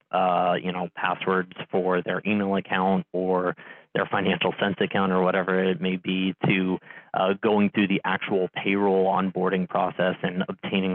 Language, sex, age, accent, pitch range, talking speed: English, male, 30-49, American, 90-100 Hz, 160 wpm